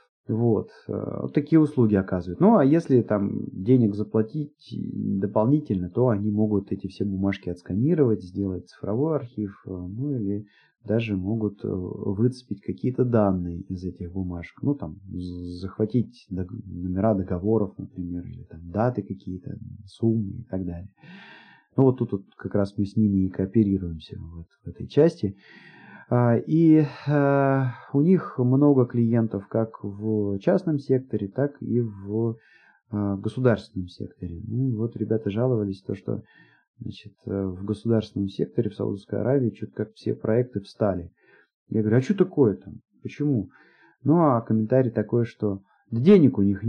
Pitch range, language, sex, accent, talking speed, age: 100-125 Hz, Russian, male, native, 145 wpm, 30-49